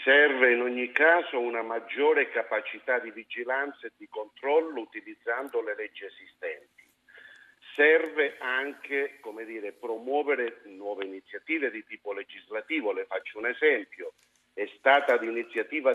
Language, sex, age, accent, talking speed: Italian, male, 50-69, native, 115 wpm